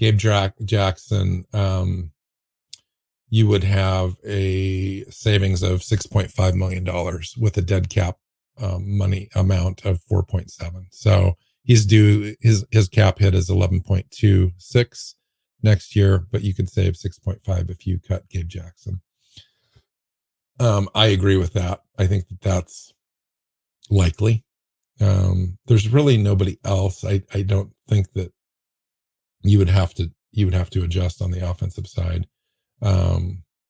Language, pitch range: English, 90-105 Hz